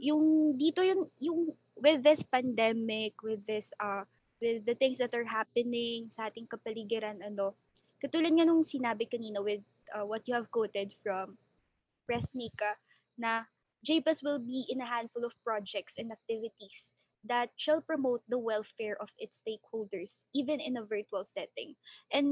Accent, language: native, Filipino